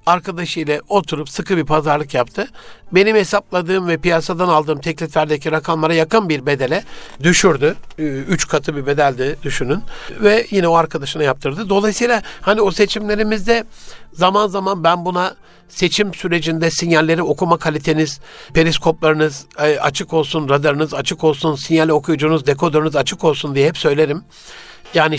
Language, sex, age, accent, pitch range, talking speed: Turkish, male, 60-79, native, 150-180 Hz, 130 wpm